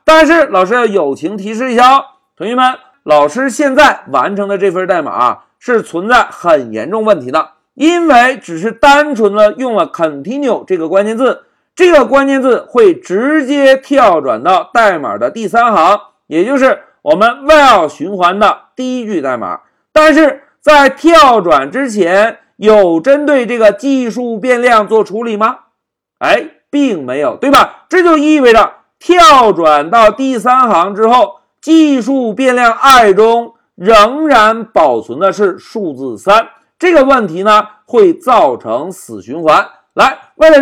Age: 50-69